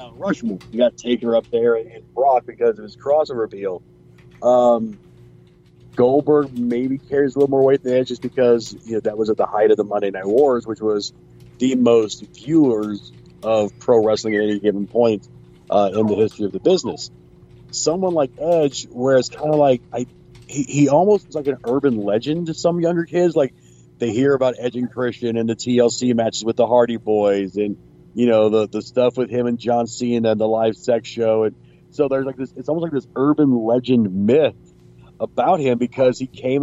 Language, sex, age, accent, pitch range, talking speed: English, male, 40-59, American, 105-130 Hz, 205 wpm